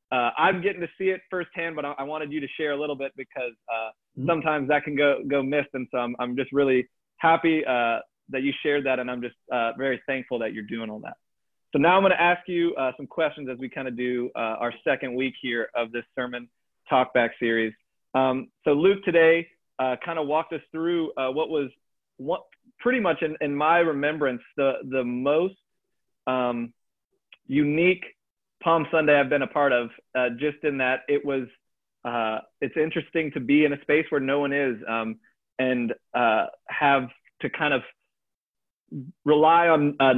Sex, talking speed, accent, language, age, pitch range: male, 205 wpm, American, English, 30-49, 130-160 Hz